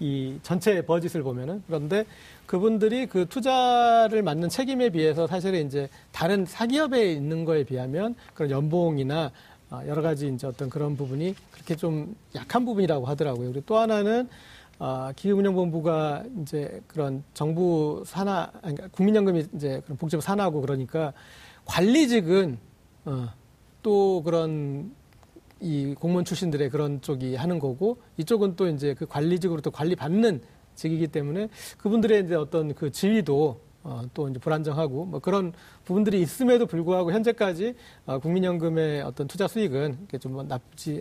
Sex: male